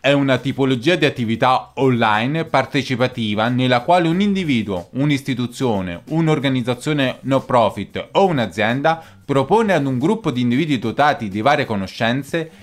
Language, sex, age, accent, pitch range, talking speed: Italian, male, 20-39, native, 120-160 Hz, 130 wpm